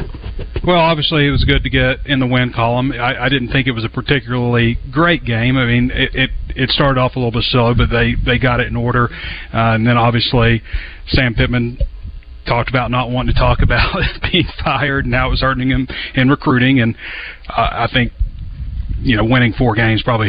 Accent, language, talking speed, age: American, English, 215 wpm, 40-59